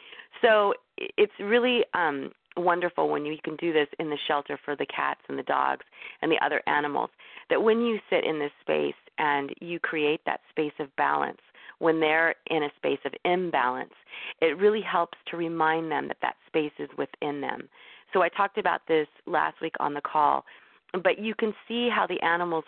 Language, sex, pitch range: English, female, 150-190 Hz